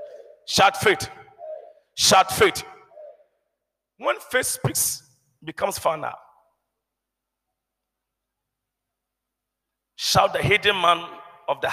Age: 40-59